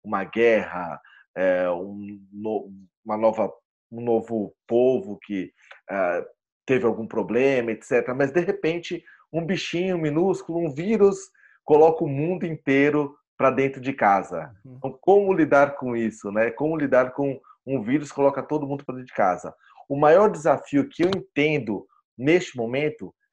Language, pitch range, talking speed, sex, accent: Portuguese, 120-160 Hz, 135 wpm, male, Brazilian